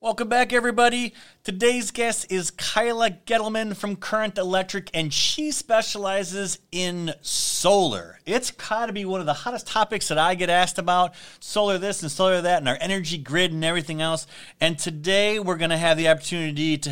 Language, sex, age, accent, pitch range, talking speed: English, male, 30-49, American, 145-195 Hz, 175 wpm